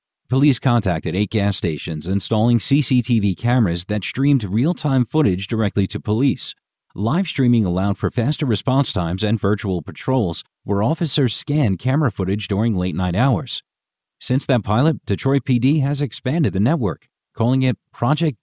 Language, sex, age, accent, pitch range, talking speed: English, male, 50-69, American, 100-135 Hz, 145 wpm